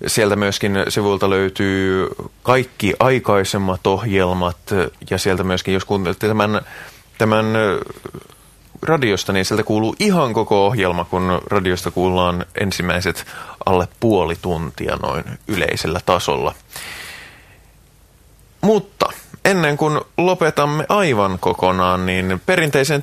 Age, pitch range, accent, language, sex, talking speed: 30-49, 90-125 Hz, native, Finnish, male, 100 wpm